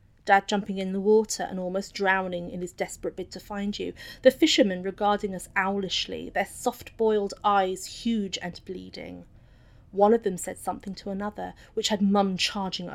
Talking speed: 170 wpm